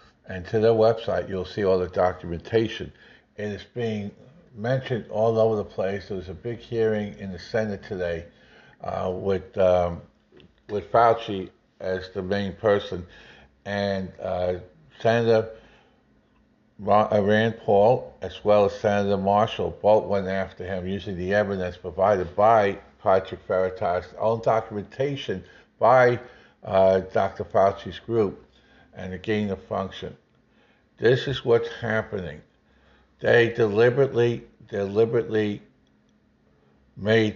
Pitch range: 95-105 Hz